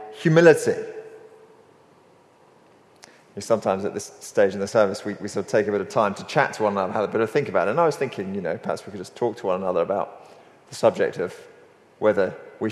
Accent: British